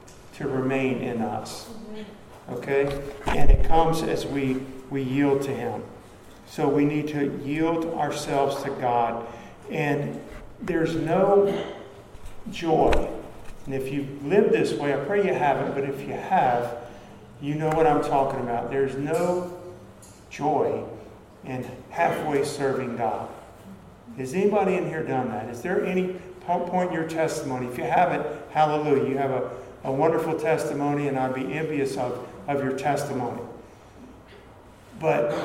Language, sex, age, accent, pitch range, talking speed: English, male, 50-69, American, 130-160 Hz, 145 wpm